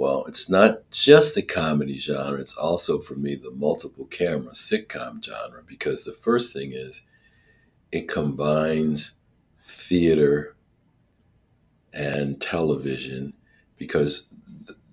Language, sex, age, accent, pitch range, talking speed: English, male, 50-69, American, 70-80 Hz, 110 wpm